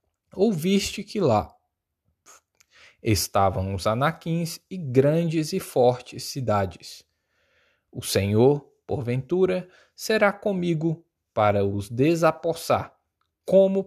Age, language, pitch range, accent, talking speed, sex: 20-39, Portuguese, 105-180 Hz, Brazilian, 85 wpm, male